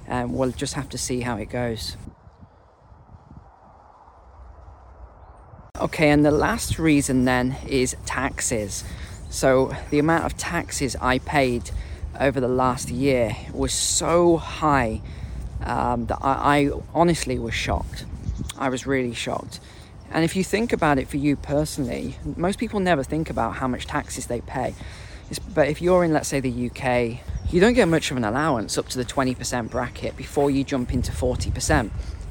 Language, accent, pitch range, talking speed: English, British, 115-150 Hz, 160 wpm